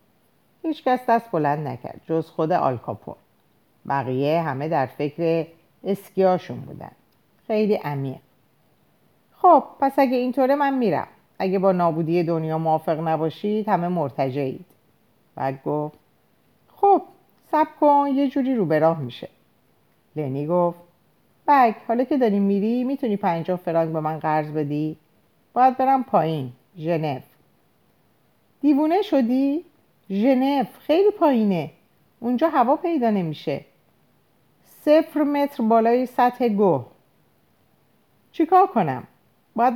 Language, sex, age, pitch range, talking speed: Persian, female, 50-69, 160-260 Hz, 115 wpm